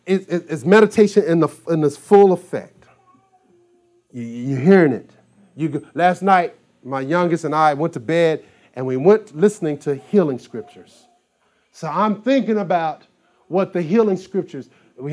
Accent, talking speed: American, 165 wpm